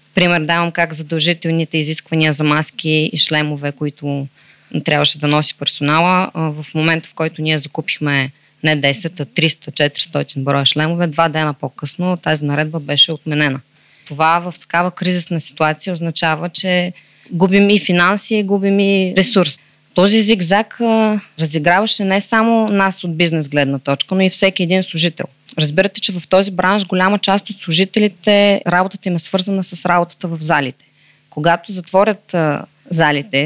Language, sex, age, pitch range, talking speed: Bulgarian, female, 20-39, 155-185 Hz, 150 wpm